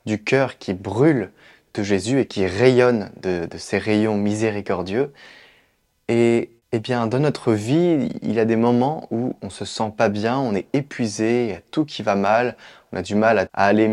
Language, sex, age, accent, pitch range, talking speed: French, male, 20-39, French, 100-125 Hz, 205 wpm